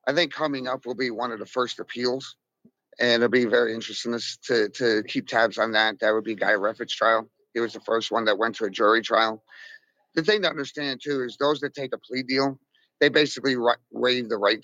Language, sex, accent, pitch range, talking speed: English, male, American, 115-140 Hz, 240 wpm